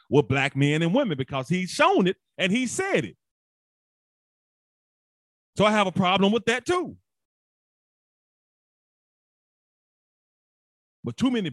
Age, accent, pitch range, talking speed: 30-49, American, 130-190 Hz, 125 wpm